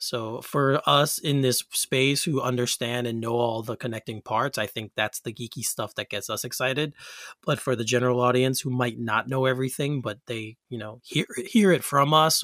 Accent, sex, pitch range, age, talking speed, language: American, male, 115-155 Hz, 30-49, 205 wpm, English